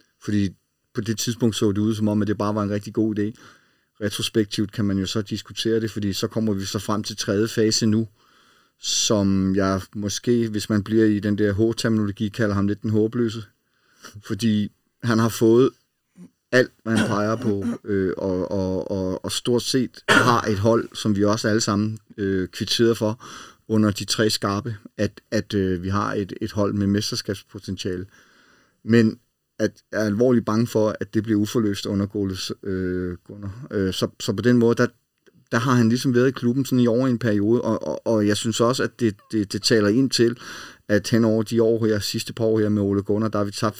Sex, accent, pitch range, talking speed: male, native, 100-115 Hz, 200 wpm